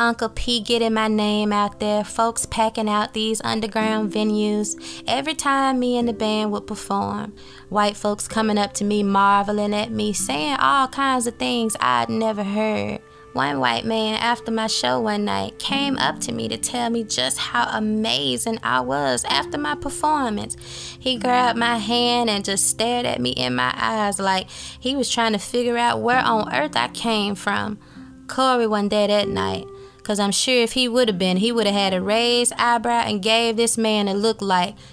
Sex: female